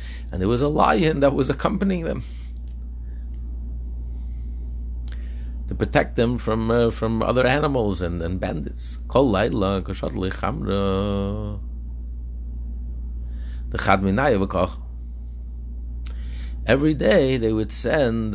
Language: English